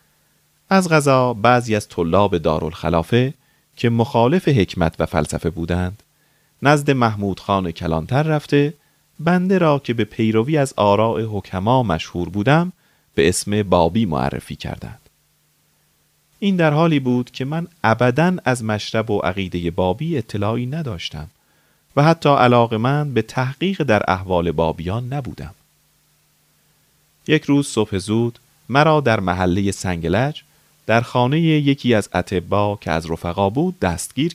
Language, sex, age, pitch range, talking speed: Persian, male, 40-59, 95-145 Hz, 130 wpm